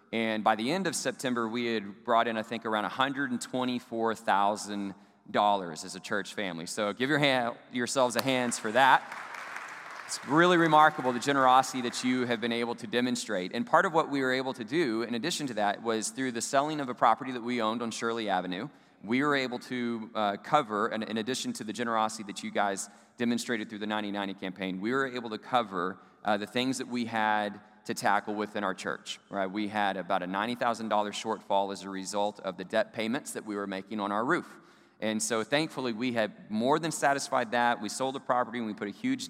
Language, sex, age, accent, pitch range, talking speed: English, male, 30-49, American, 105-130 Hz, 215 wpm